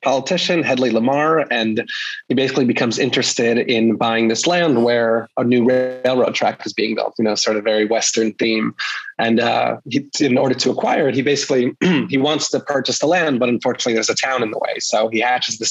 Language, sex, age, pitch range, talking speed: English, male, 20-39, 115-130 Hz, 205 wpm